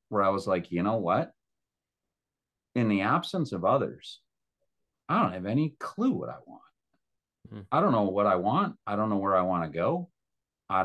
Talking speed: 195 wpm